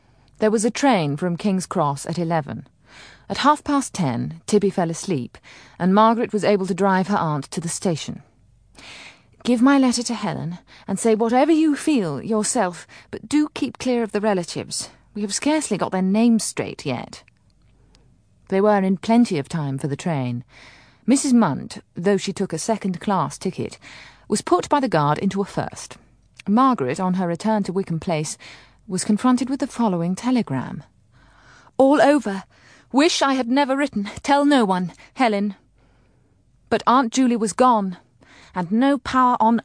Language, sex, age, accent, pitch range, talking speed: English, female, 30-49, British, 160-225 Hz, 165 wpm